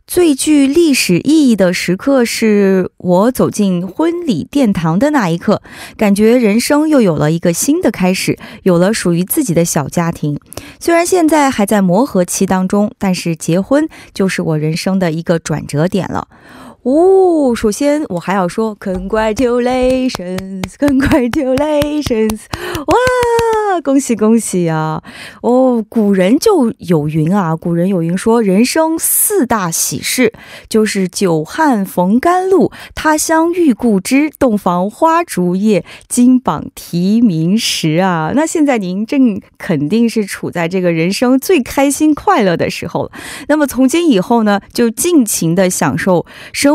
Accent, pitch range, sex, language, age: Chinese, 180-280 Hz, female, Korean, 20-39